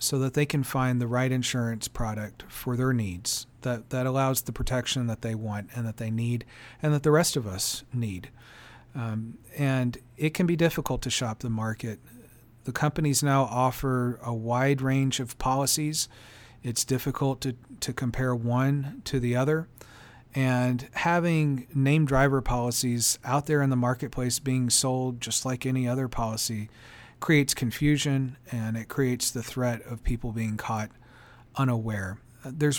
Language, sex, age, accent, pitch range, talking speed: English, male, 40-59, American, 115-135 Hz, 165 wpm